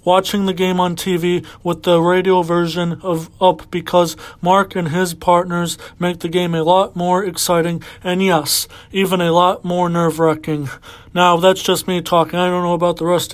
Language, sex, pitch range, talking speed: English, male, 170-200 Hz, 185 wpm